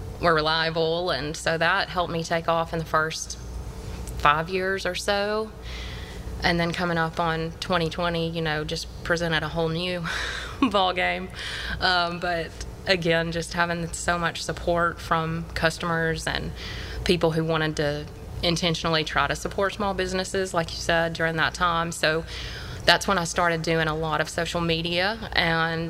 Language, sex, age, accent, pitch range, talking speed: English, female, 20-39, American, 160-180 Hz, 160 wpm